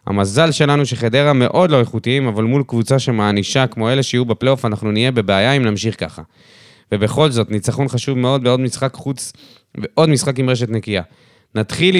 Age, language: 20-39, Hebrew